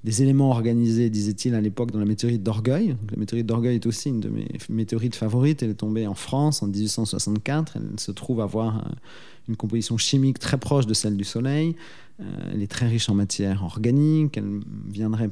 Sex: male